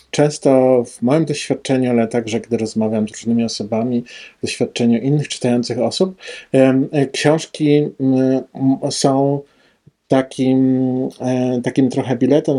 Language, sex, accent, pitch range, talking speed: Polish, male, native, 115-130 Hz, 105 wpm